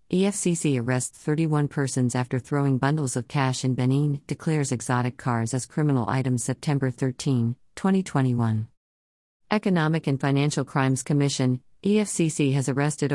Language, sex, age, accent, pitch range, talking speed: English, female, 50-69, American, 130-155 Hz, 130 wpm